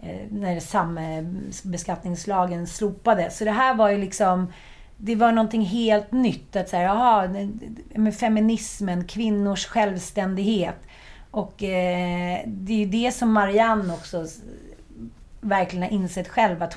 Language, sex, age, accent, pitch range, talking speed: Swedish, female, 30-49, native, 180-215 Hz, 125 wpm